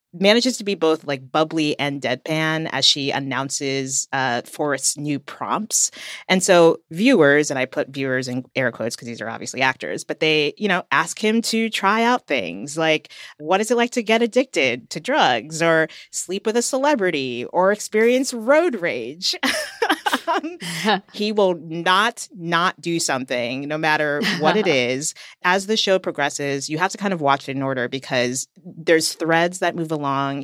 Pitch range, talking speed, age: 140-195 Hz, 175 wpm, 30-49